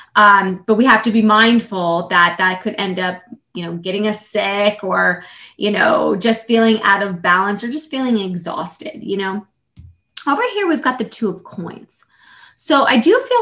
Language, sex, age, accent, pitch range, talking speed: English, female, 20-39, American, 195-230 Hz, 190 wpm